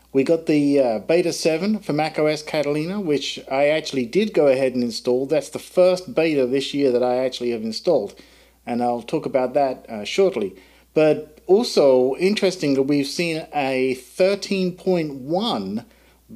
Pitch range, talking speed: 135-175 Hz, 155 wpm